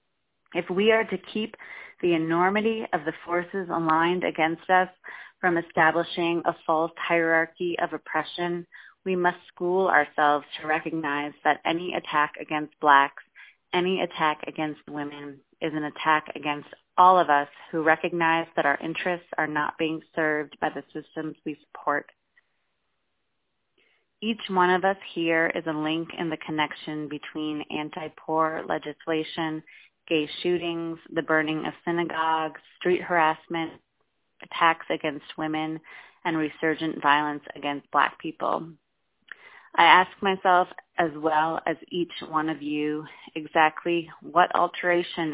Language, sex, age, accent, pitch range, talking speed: English, female, 30-49, American, 155-175 Hz, 130 wpm